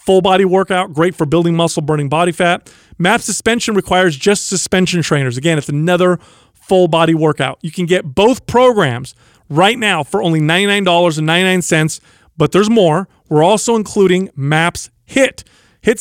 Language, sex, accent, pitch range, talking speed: English, male, American, 160-200 Hz, 155 wpm